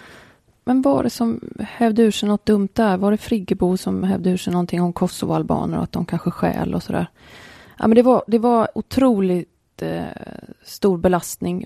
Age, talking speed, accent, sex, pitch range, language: 20-39, 195 wpm, Swedish, female, 170-195 Hz, English